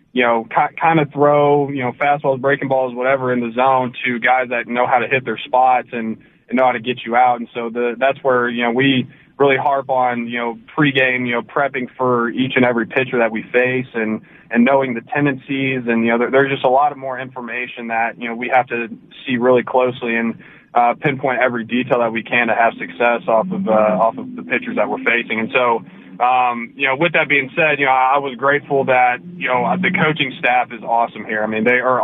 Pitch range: 120-135 Hz